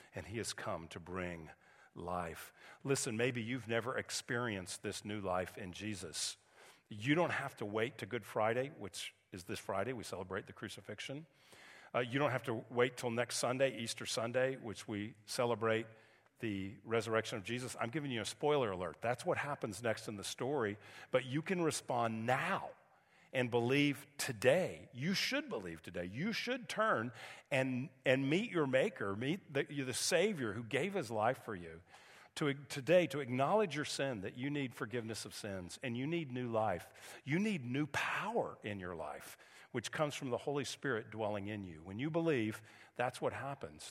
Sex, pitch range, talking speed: male, 105-140 Hz, 180 wpm